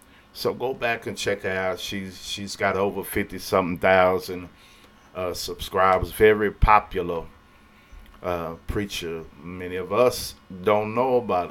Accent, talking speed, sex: American, 135 wpm, male